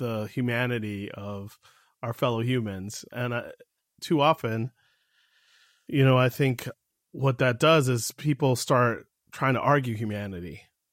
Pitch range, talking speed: 110-140 Hz, 125 wpm